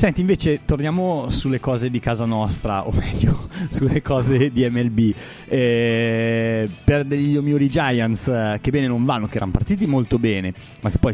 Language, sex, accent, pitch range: Italian, male, native, 110-130 Hz